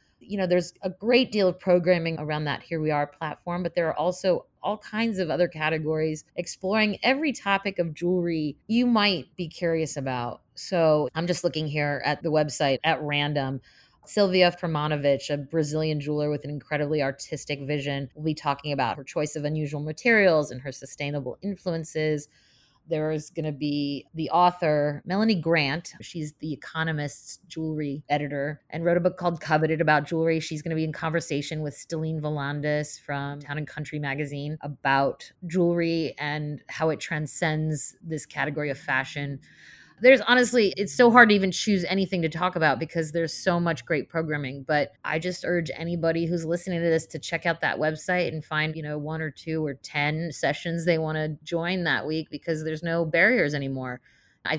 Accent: American